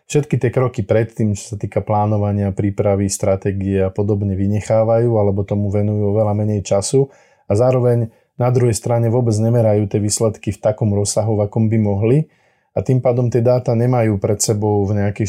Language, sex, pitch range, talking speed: Slovak, male, 100-115 Hz, 175 wpm